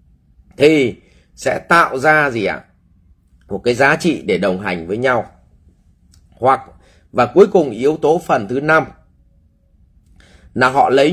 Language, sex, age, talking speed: English, male, 30-49, 145 wpm